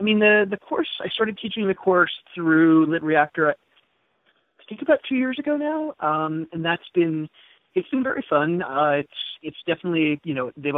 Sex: male